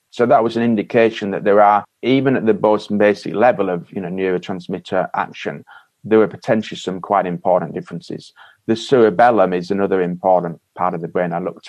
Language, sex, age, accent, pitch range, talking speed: English, male, 30-49, British, 90-105 Hz, 190 wpm